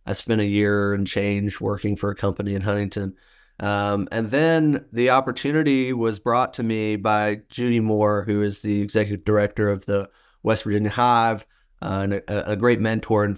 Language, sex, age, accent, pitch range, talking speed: English, male, 40-59, American, 100-115 Hz, 185 wpm